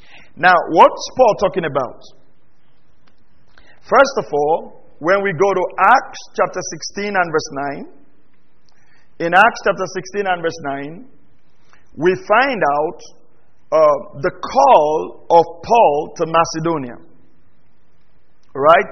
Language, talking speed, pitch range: English, 115 wpm, 155-200 Hz